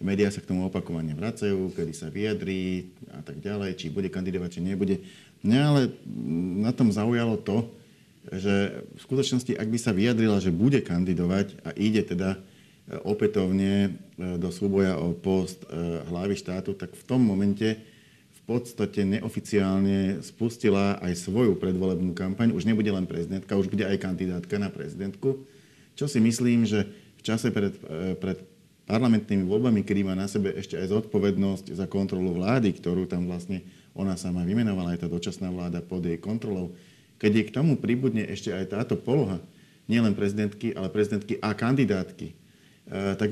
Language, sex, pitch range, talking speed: Slovak, male, 95-110 Hz, 155 wpm